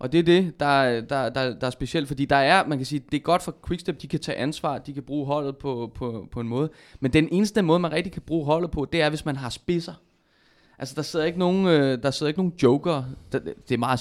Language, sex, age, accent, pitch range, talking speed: Danish, male, 20-39, native, 120-155 Hz, 270 wpm